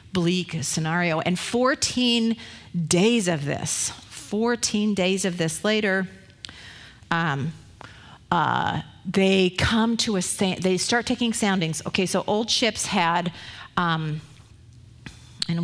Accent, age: American, 40-59